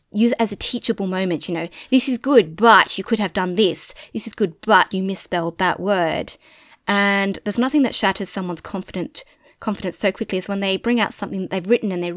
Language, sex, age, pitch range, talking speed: English, female, 20-39, 175-225 Hz, 225 wpm